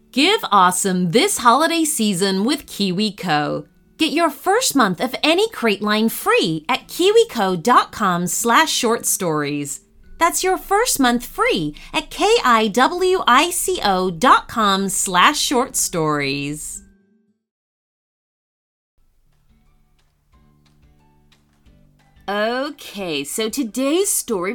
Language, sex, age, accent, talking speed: English, female, 30-49, American, 70 wpm